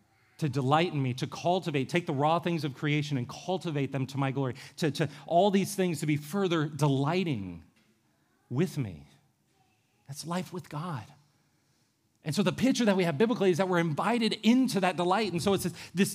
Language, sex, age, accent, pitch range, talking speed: English, male, 40-59, American, 130-185 Hz, 195 wpm